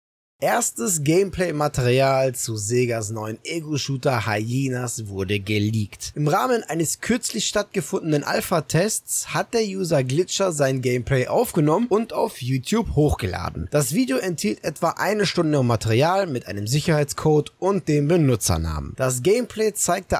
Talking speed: 125 wpm